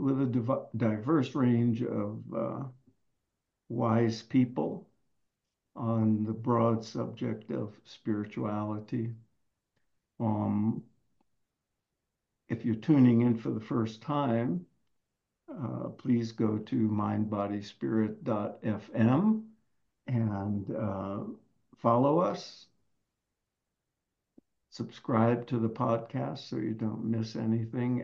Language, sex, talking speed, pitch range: English, male, 90 wpm, 110-125 Hz